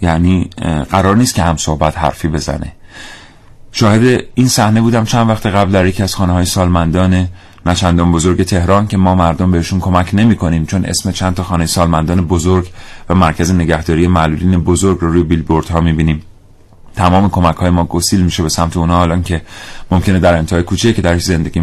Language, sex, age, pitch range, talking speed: Persian, male, 30-49, 85-100 Hz, 185 wpm